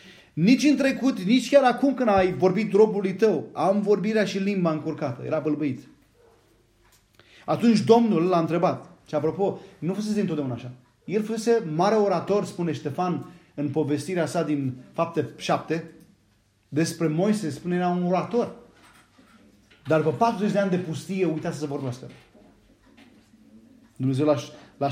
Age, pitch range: 30-49, 150-210 Hz